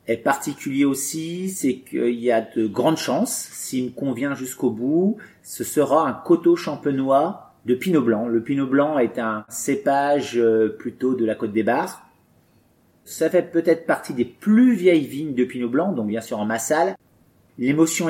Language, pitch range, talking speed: French, 120-165 Hz, 170 wpm